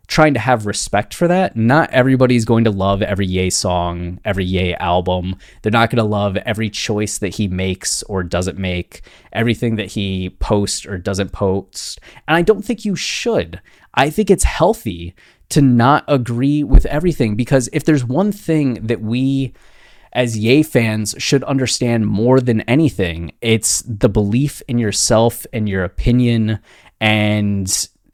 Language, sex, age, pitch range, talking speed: English, male, 20-39, 100-130 Hz, 160 wpm